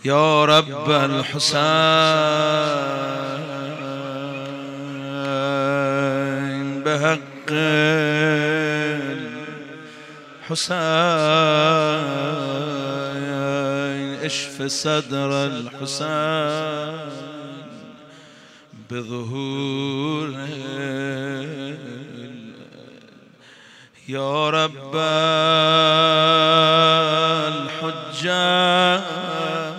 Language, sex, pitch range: Persian, male, 140-155 Hz